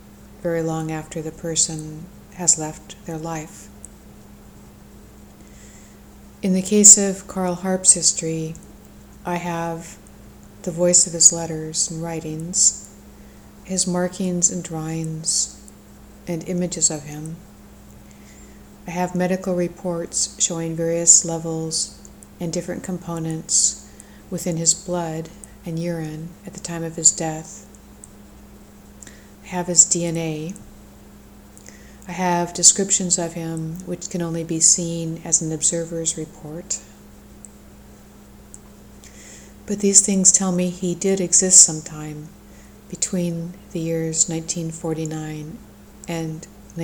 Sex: female